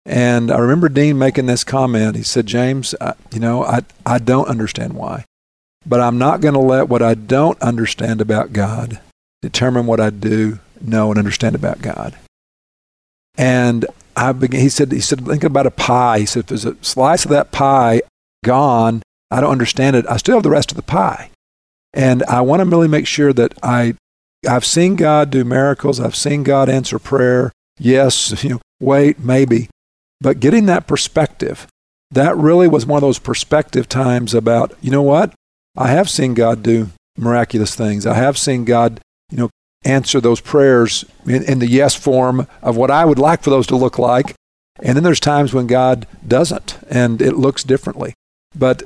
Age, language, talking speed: 50-69, English, 190 wpm